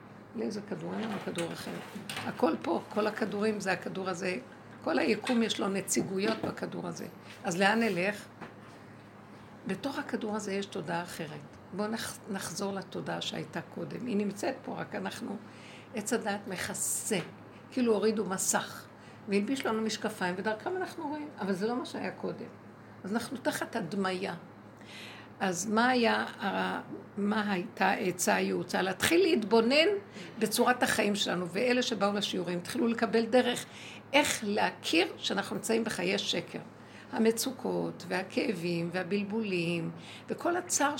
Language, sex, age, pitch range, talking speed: Hebrew, female, 60-79, 190-250 Hz, 130 wpm